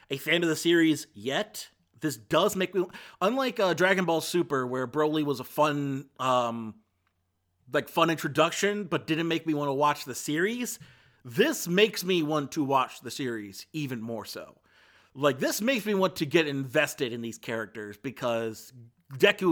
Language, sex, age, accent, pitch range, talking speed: English, male, 30-49, American, 125-155 Hz, 175 wpm